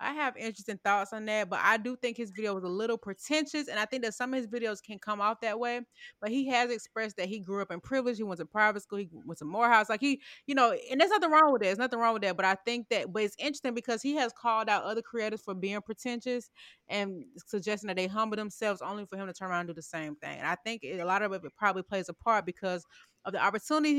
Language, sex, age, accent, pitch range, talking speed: English, female, 20-39, American, 190-235 Hz, 280 wpm